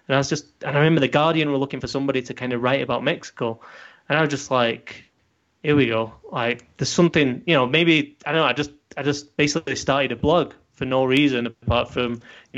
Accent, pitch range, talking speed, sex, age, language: British, 125-145 Hz, 240 wpm, male, 20-39, English